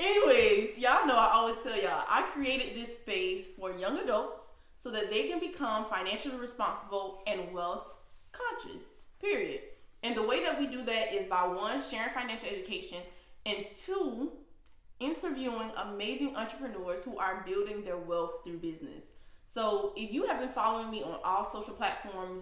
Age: 20-39